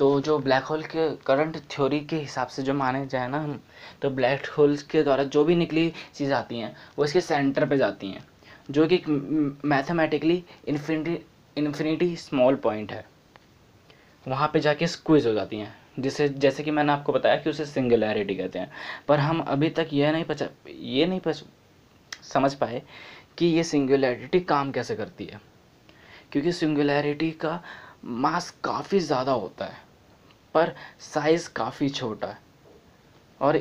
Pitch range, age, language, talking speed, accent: 130-155 Hz, 20-39, Hindi, 160 wpm, native